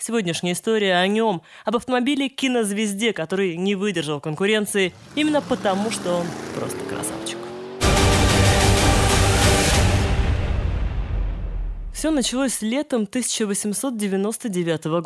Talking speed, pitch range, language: 80 wpm, 170-250 Hz, Russian